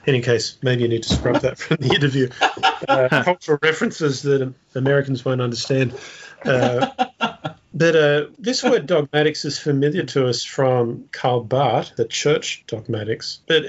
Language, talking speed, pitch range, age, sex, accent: English, 160 wpm, 120-150 Hz, 40-59, male, Australian